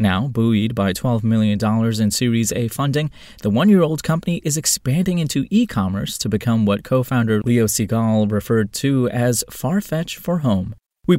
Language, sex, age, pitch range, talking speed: English, male, 20-39, 105-130 Hz, 155 wpm